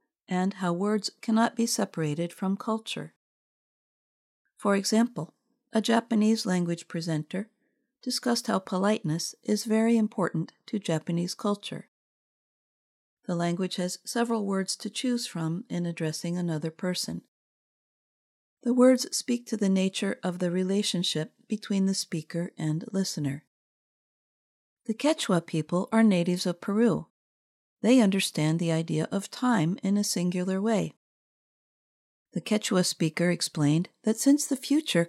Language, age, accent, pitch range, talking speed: English, 50-69, American, 175-225 Hz, 125 wpm